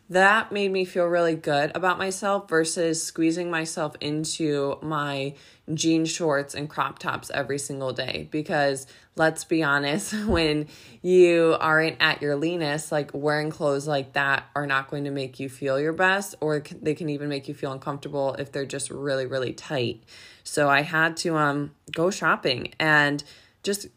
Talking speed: 170 wpm